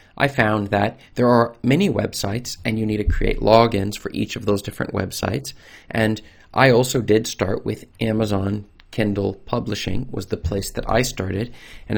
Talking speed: 175 wpm